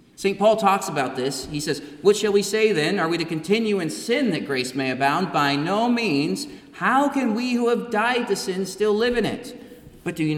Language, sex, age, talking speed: English, male, 30-49, 230 wpm